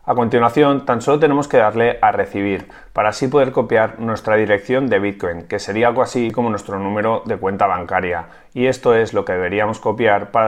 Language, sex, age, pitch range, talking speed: Spanish, male, 30-49, 100-130 Hz, 200 wpm